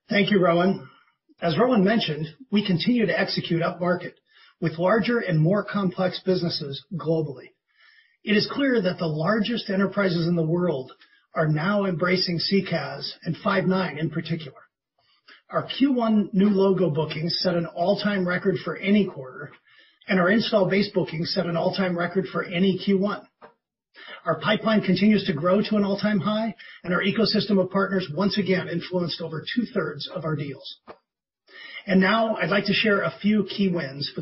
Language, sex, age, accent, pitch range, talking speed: English, male, 40-59, American, 170-205 Hz, 165 wpm